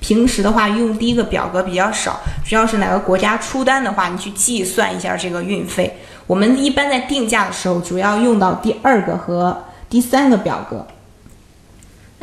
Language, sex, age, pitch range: Chinese, female, 20-39, 180-225 Hz